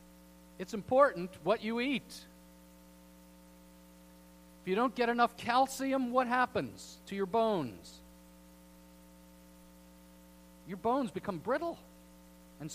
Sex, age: male, 50-69